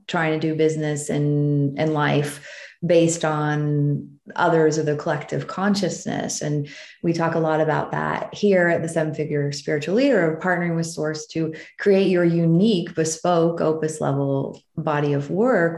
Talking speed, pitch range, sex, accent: 165 wpm, 150-170 Hz, female, American